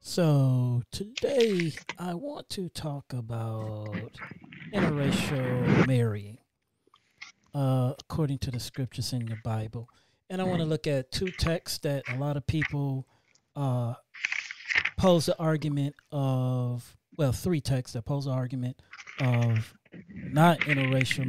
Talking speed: 125 wpm